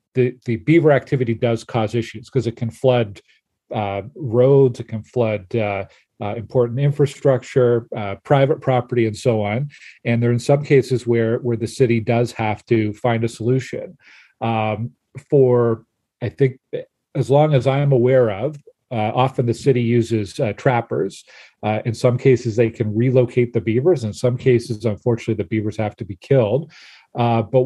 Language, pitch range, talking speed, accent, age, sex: English, 110-130 Hz, 170 wpm, American, 40-59, male